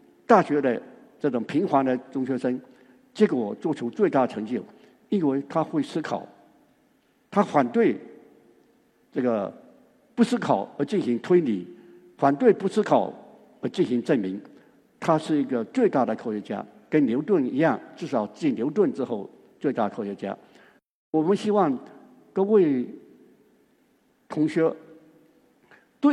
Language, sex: Chinese, male